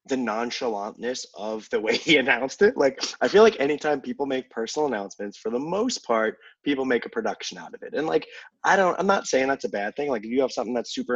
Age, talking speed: 20-39, 245 wpm